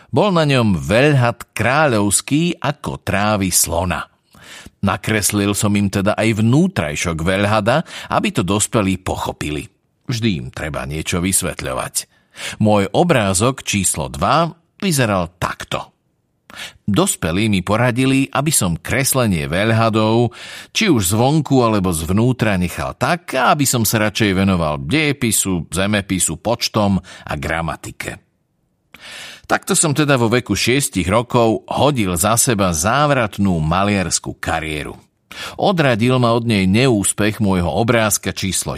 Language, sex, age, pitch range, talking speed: Slovak, male, 50-69, 95-120 Hz, 115 wpm